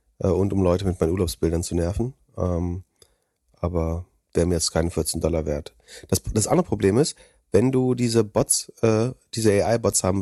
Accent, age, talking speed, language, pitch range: German, 40-59, 175 wpm, German, 90-110 Hz